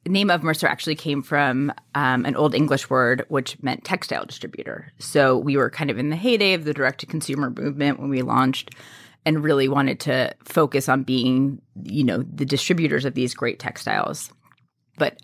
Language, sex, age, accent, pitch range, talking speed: English, female, 20-39, American, 130-155 Hz, 180 wpm